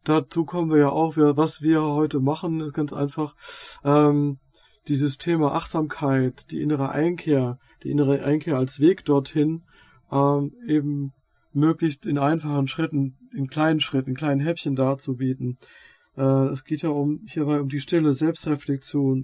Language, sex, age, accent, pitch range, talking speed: German, male, 40-59, German, 140-165 Hz, 150 wpm